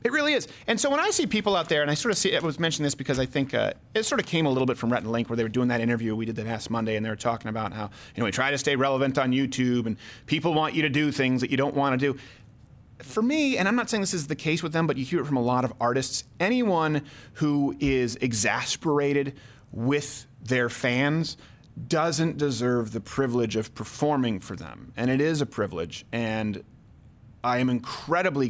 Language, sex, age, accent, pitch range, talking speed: English, male, 30-49, American, 125-160 Hz, 250 wpm